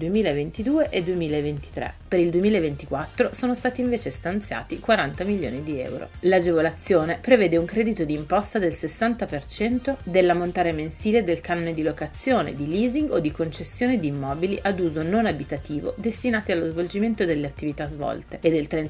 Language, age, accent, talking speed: Italian, 40-59, native, 150 wpm